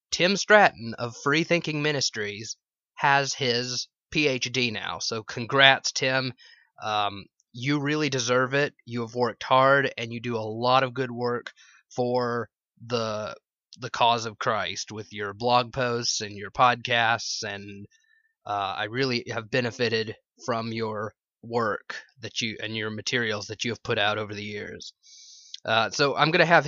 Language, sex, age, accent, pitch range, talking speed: English, male, 20-39, American, 115-145 Hz, 160 wpm